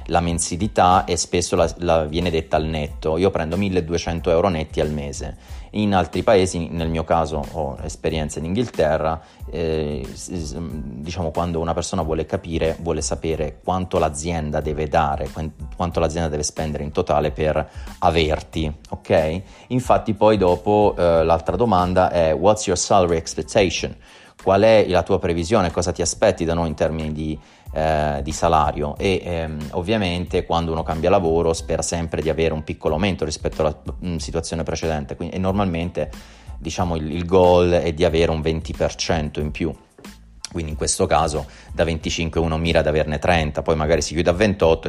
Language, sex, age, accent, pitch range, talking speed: Italian, male, 30-49, native, 75-90 Hz, 170 wpm